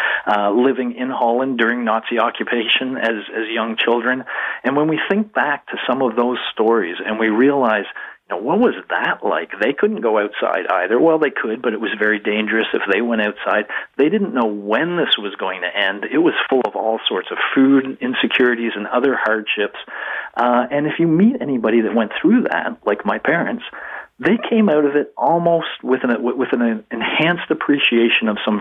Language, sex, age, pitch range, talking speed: English, male, 50-69, 110-135 Hz, 205 wpm